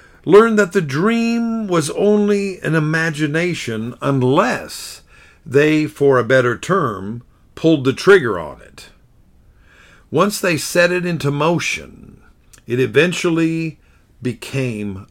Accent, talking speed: American, 110 wpm